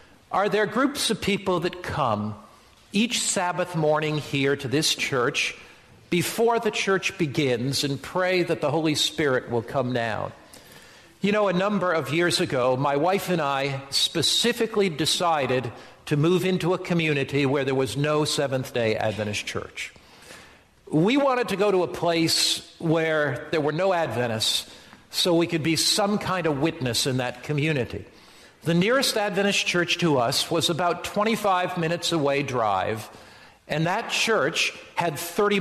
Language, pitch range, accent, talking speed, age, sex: English, 150-195 Hz, American, 155 wpm, 50-69, male